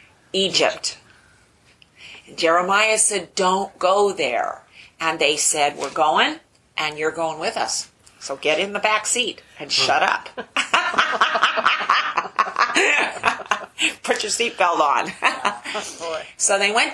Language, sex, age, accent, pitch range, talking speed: English, female, 40-59, American, 160-210 Hz, 115 wpm